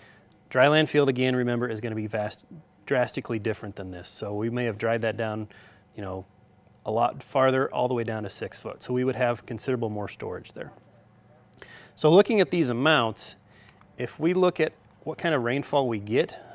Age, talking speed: 30-49, 200 wpm